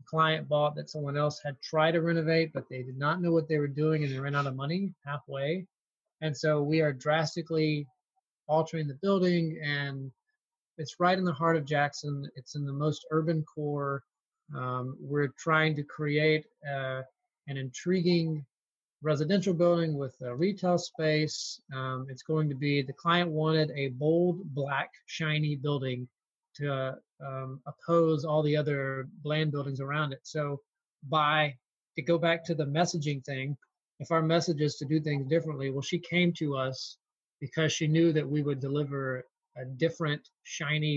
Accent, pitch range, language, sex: American, 140-165 Hz, English, male